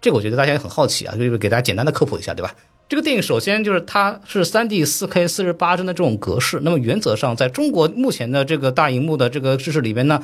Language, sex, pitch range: Chinese, male, 105-155 Hz